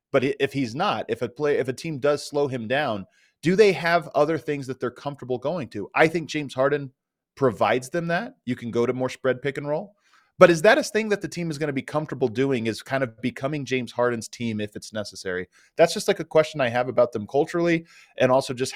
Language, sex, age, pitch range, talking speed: English, male, 30-49, 120-165 Hz, 245 wpm